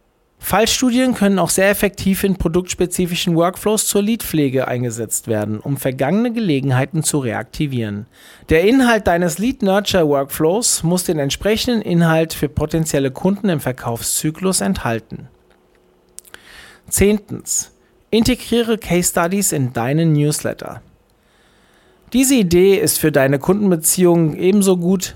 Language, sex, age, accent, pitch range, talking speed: German, male, 40-59, German, 145-200 Hz, 110 wpm